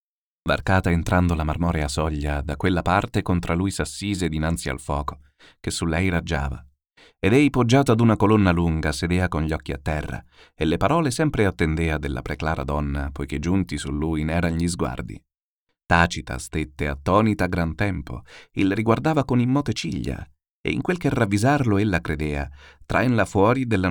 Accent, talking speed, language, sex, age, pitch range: native, 165 wpm, Italian, male, 30-49, 80-110 Hz